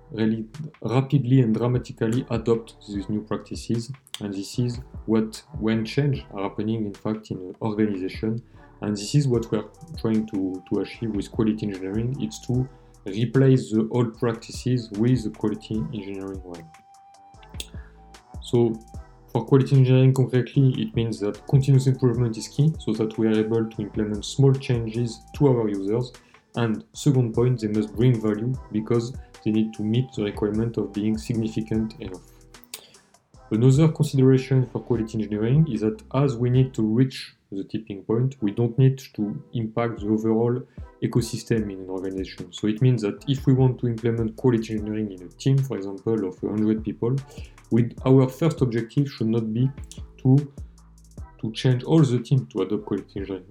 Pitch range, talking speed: 110-130 Hz, 165 wpm